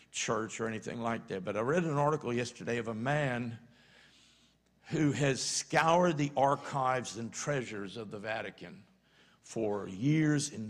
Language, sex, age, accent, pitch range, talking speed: English, male, 60-79, American, 110-150 Hz, 150 wpm